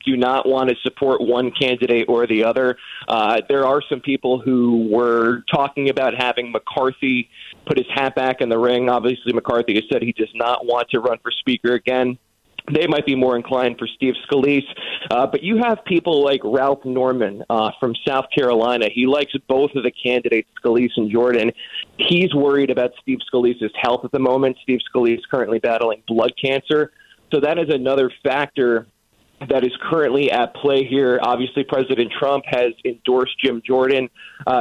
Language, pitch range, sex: English, 120-135 Hz, male